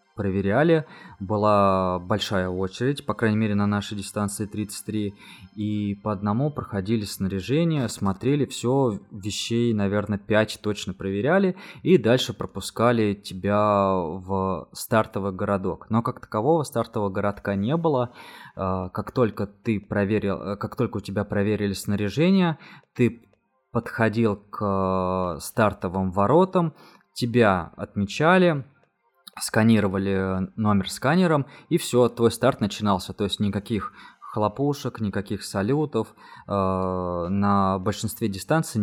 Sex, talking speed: male, 110 wpm